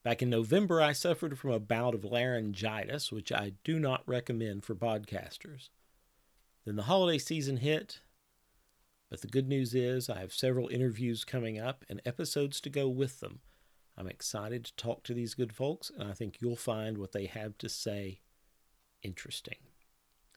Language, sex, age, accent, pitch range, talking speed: English, male, 50-69, American, 100-140 Hz, 170 wpm